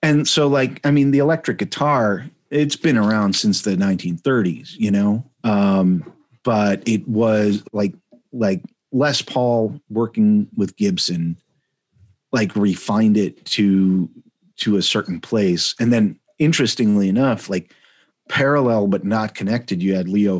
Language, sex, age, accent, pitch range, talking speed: English, male, 40-59, American, 100-125 Hz, 140 wpm